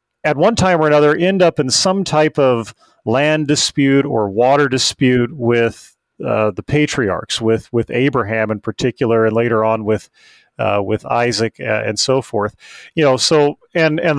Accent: American